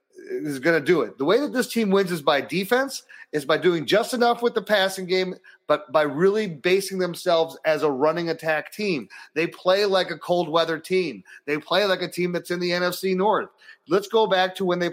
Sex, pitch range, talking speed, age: male, 150-195 Hz, 225 wpm, 30-49